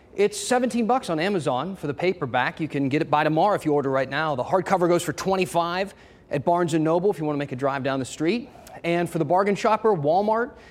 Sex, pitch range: male, 145-195 Hz